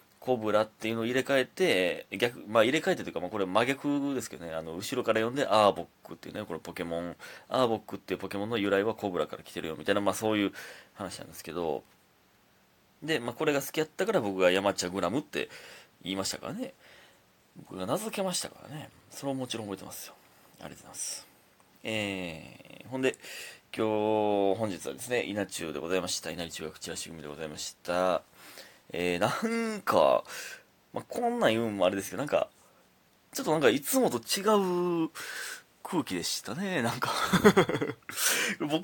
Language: Japanese